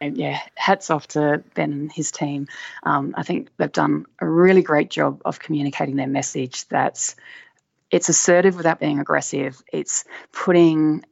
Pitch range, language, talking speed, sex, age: 145-180 Hz, English, 155 wpm, female, 30-49